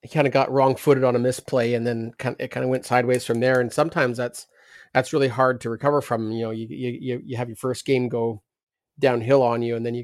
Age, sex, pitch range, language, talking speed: 30-49, male, 120-150 Hz, English, 265 wpm